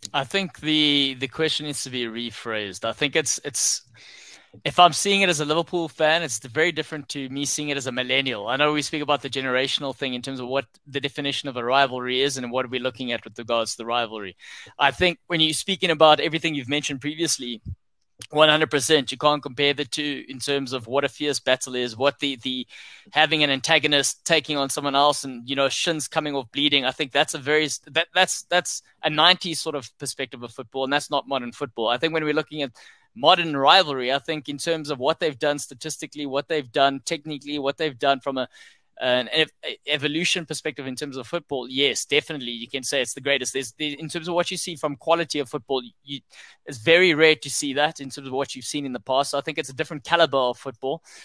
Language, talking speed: English, 230 wpm